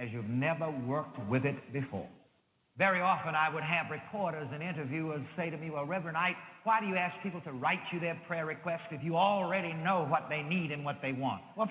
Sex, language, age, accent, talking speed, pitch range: male, English, 50-69, American, 225 wpm, 150-210 Hz